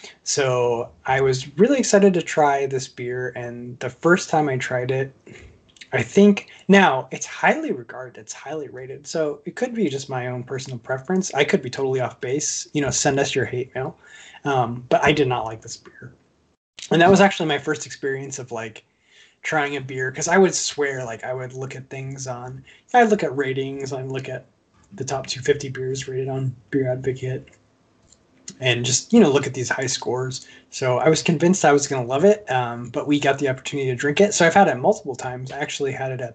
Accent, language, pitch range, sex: American, English, 130-155 Hz, male